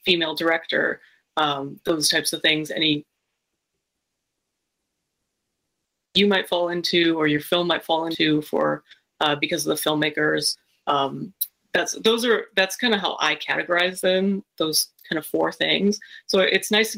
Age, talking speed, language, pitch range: 30-49, 155 wpm, English, 155-185 Hz